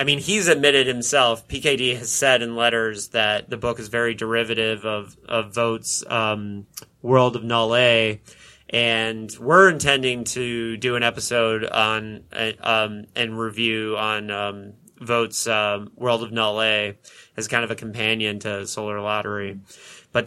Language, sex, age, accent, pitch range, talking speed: English, male, 30-49, American, 115-135 Hz, 155 wpm